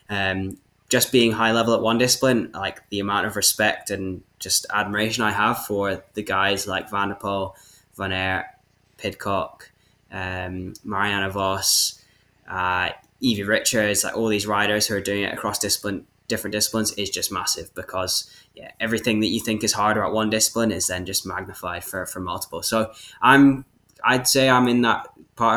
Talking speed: 175 wpm